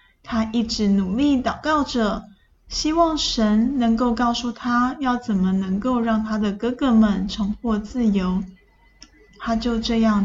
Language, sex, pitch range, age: Chinese, female, 220-275 Hz, 10-29